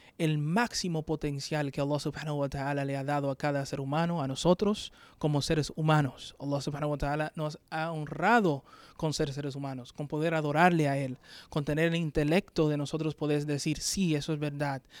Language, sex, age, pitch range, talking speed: English, male, 20-39, 140-165 Hz, 190 wpm